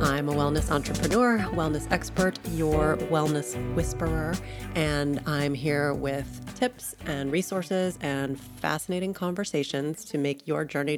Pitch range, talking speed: 140-165 Hz, 125 wpm